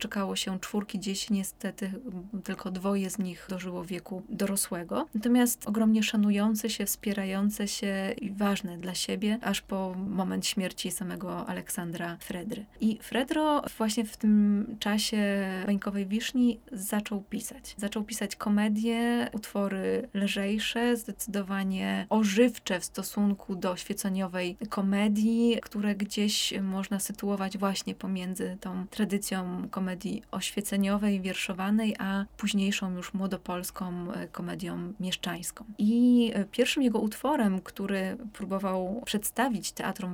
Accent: native